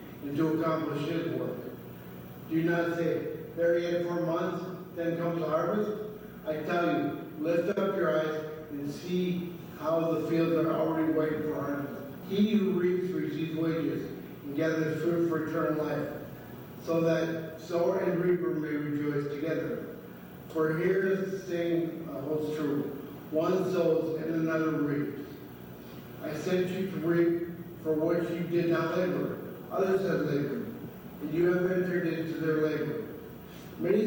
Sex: male